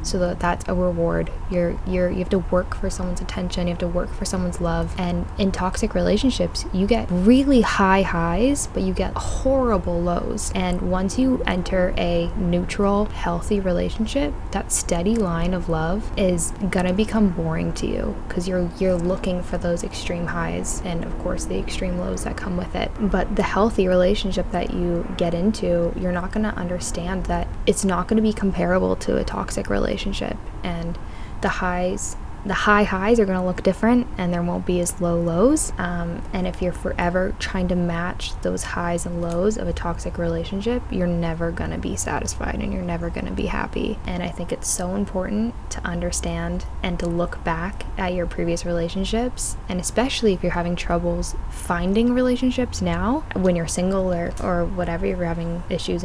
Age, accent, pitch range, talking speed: 10-29, American, 170-200 Hz, 190 wpm